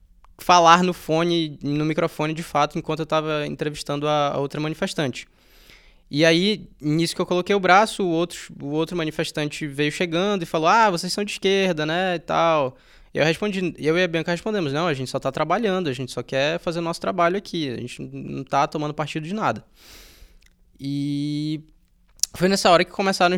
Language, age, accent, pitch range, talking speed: Portuguese, 20-39, Brazilian, 130-175 Hz, 190 wpm